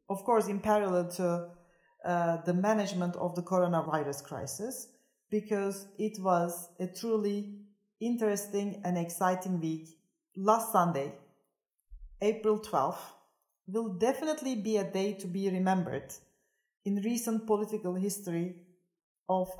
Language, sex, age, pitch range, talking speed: English, female, 40-59, 175-210 Hz, 115 wpm